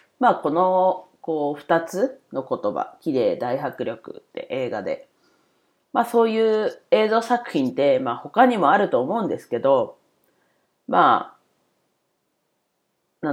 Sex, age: female, 40-59